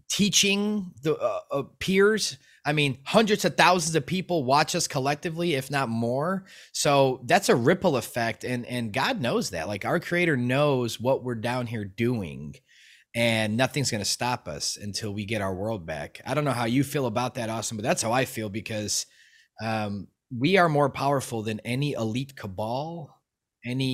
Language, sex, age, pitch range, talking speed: English, male, 20-39, 110-150 Hz, 185 wpm